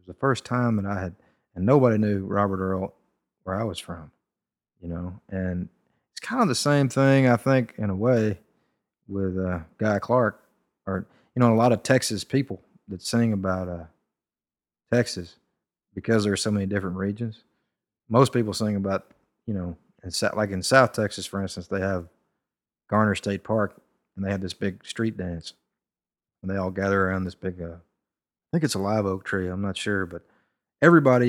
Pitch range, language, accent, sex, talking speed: 90-110 Hz, English, American, male, 190 wpm